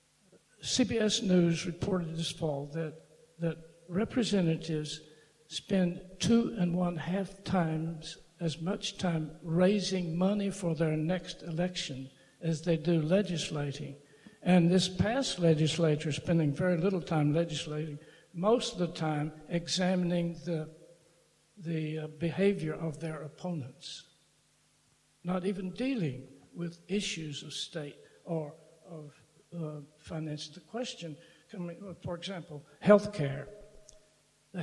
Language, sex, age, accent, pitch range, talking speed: English, male, 60-79, American, 155-185 Hz, 115 wpm